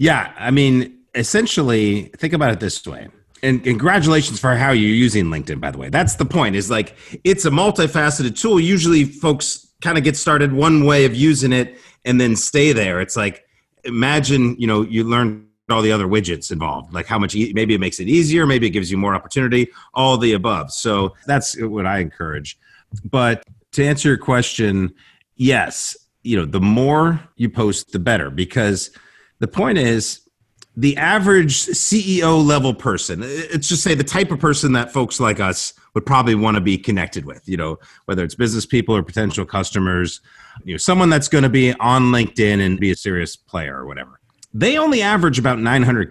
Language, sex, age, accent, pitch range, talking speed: English, male, 30-49, American, 105-150 Hz, 195 wpm